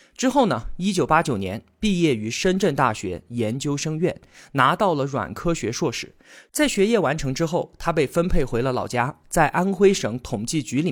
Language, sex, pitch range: Chinese, male, 125-190 Hz